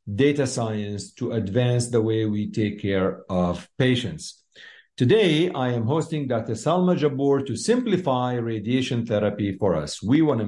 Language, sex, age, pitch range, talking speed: English, male, 50-69, 105-140 Hz, 155 wpm